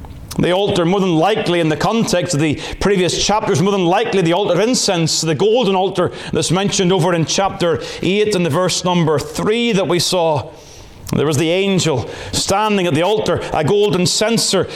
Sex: male